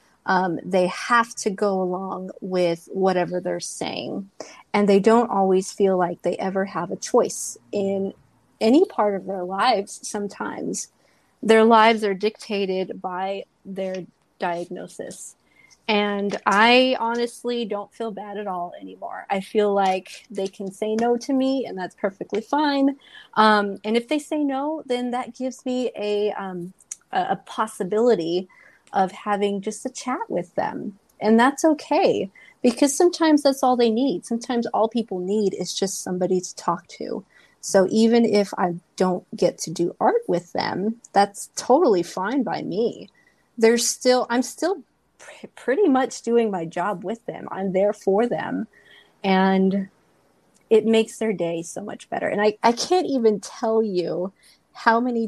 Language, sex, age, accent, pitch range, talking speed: English, female, 30-49, American, 190-240 Hz, 160 wpm